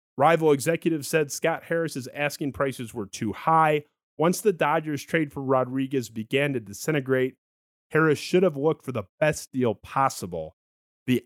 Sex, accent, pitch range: male, American, 125-170 Hz